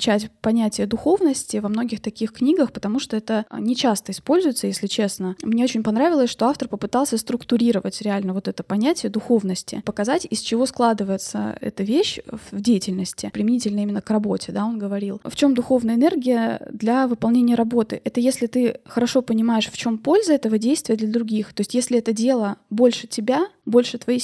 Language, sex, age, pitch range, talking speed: Russian, female, 20-39, 215-250 Hz, 170 wpm